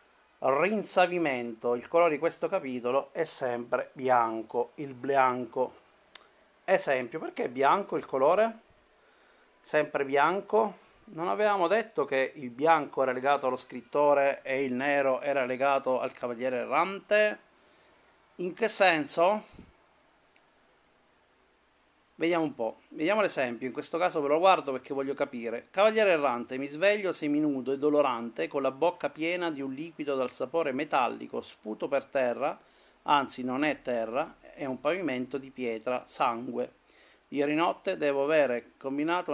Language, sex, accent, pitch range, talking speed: Italian, male, native, 130-170 Hz, 135 wpm